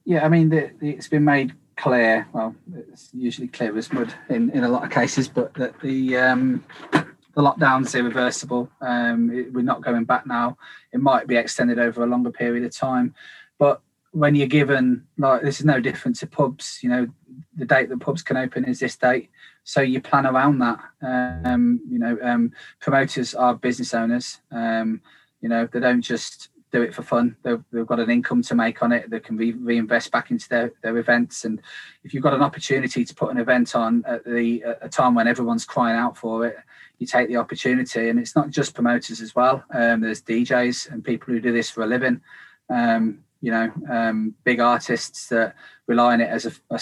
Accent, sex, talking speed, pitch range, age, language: British, male, 210 wpm, 120-140 Hz, 20-39, English